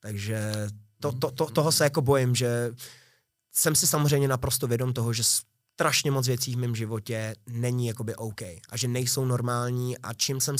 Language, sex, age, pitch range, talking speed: Czech, male, 20-39, 115-135 Hz, 180 wpm